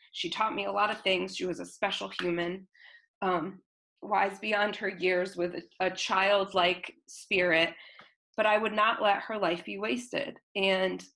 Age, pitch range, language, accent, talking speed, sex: 20-39, 195-250 Hz, English, American, 165 wpm, female